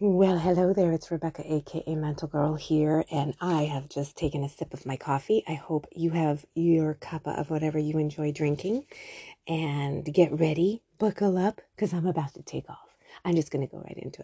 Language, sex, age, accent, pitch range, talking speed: English, female, 30-49, American, 145-185 Hz, 200 wpm